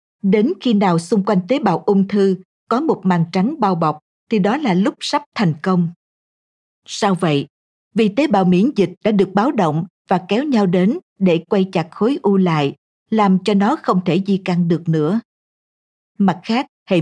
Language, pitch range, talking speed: Vietnamese, 185-230 Hz, 195 wpm